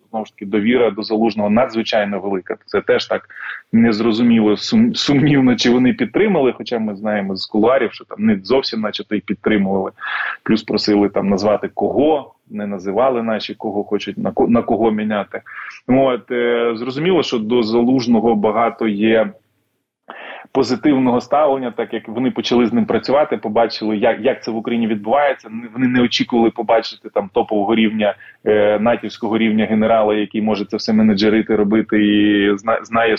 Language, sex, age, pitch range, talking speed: Ukrainian, male, 20-39, 110-145 Hz, 150 wpm